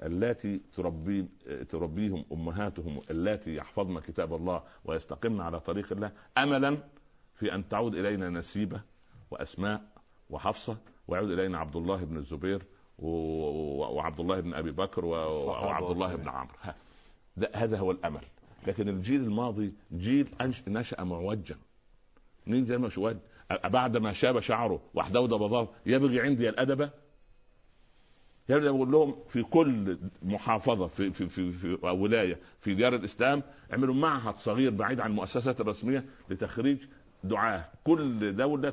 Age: 50-69